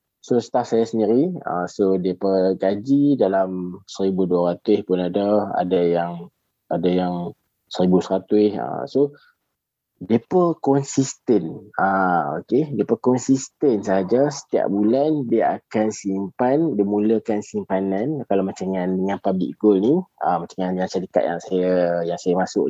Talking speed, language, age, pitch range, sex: 125 wpm, Malay, 20-39, 95-125 Hz, male